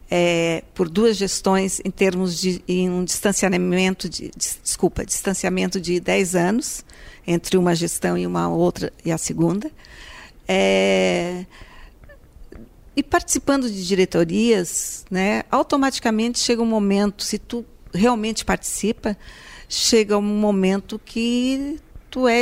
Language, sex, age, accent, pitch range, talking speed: Portuguese, female, 50-69, Brazilian, 185-225 Hz, 105 wpm